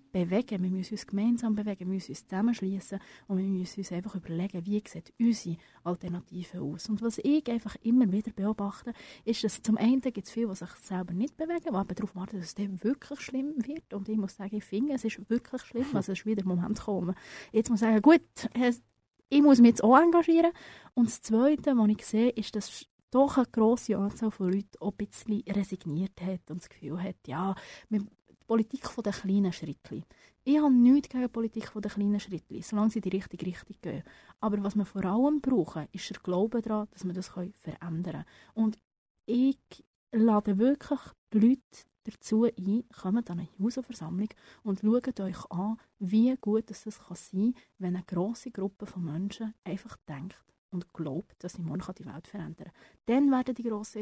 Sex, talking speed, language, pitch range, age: female, 200 wpm, German, 190-235 Hz, 30-49